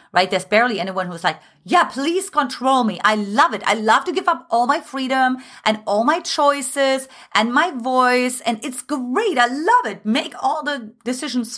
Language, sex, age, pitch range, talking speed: English, female, 30-49, 205-275 Hz, 195 wpm